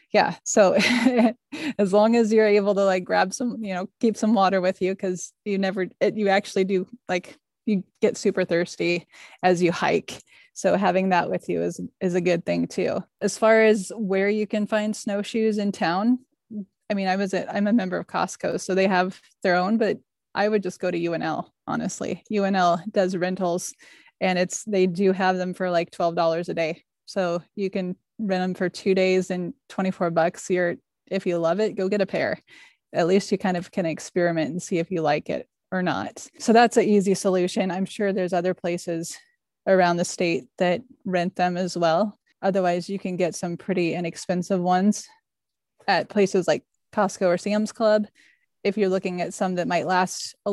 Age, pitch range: 20-39, 180-205 Hz